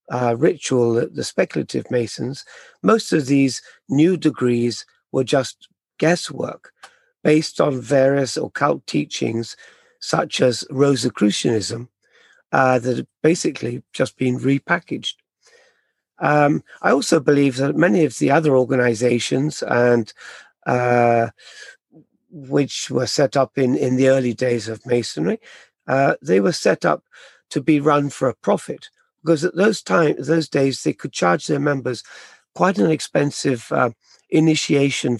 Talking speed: 135 wpm